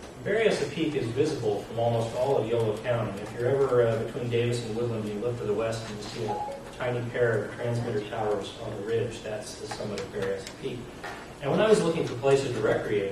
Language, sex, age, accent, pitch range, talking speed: English, male, 30-49, American, 115-135 Hz, 230 wpm